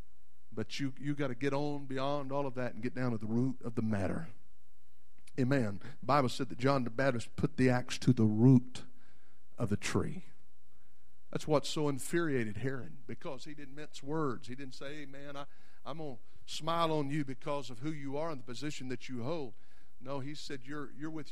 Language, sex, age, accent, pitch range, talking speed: English, male, 50-69, American, 115-175 Hz, 215 wpm